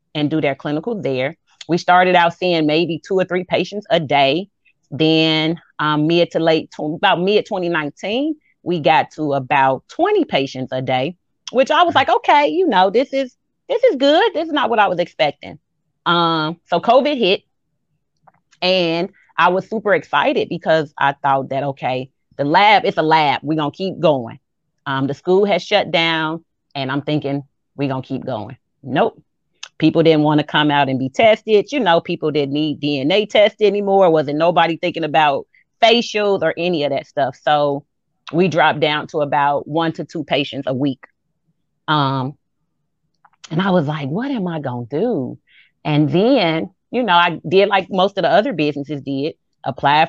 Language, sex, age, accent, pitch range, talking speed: English, female, 30-49, American, 150-185 Hz, 185 wpm